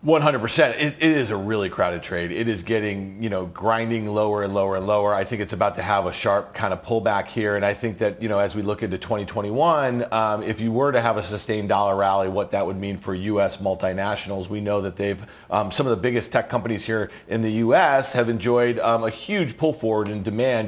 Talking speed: 240 wpm